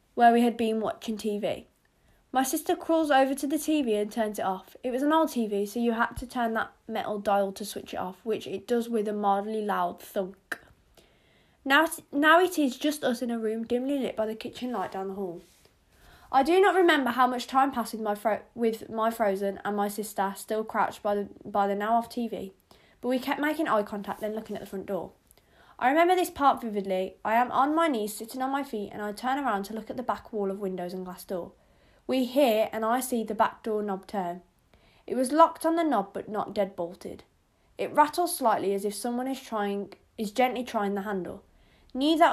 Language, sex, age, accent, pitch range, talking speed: English, female, 20-39, British, 205-260 Hz, 230 wpm